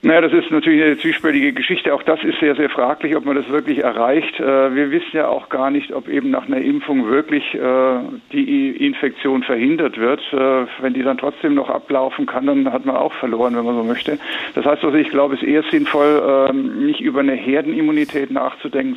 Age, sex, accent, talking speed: 50-69, male, German, 200 wpm